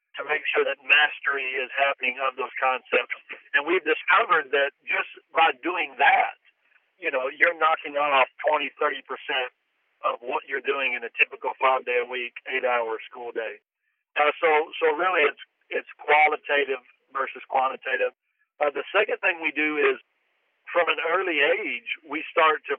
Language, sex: English, male